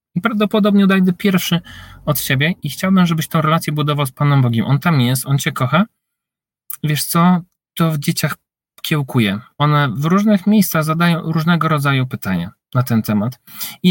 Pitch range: 135-170 Hz